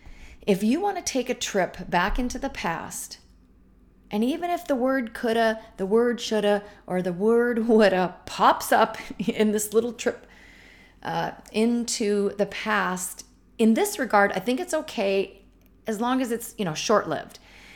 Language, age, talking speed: English, 40-59, 160 wpm